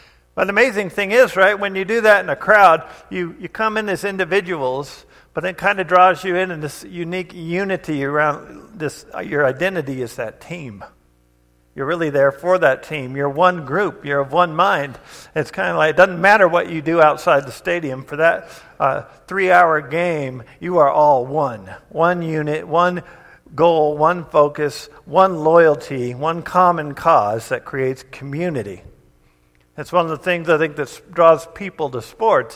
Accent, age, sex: American, 50-69, male